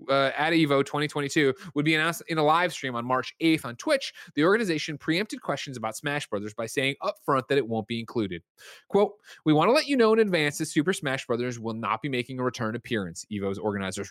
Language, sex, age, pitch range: English, male, 20-39, 115-160 Hz